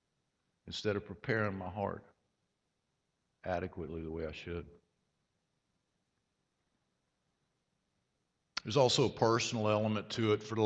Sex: male